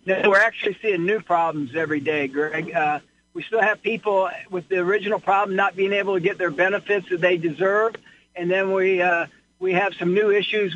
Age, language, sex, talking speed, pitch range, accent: 50-69, English, male, 205 wpm, 175-205 Hz, American